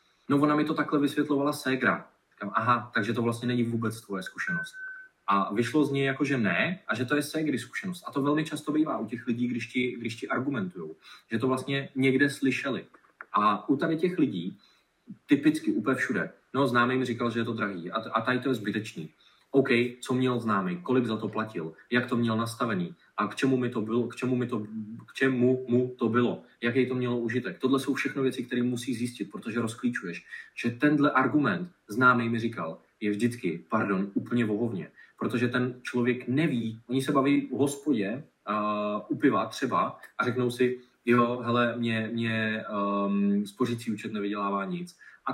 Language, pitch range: Czech, 115-135 Hz